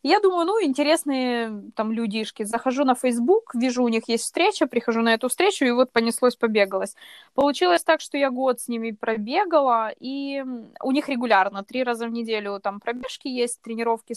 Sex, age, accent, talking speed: female, 20-39, native, 180 wpm